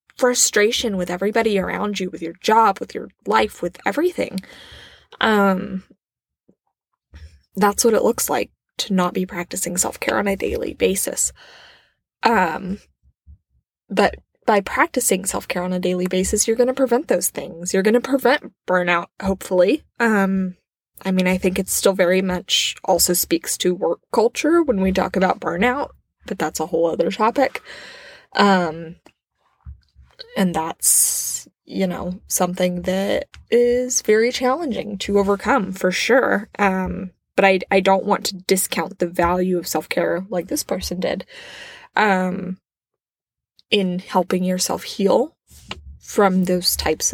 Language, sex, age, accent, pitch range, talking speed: English, female, 20-39, American, 180-225 Hz, 145 wpm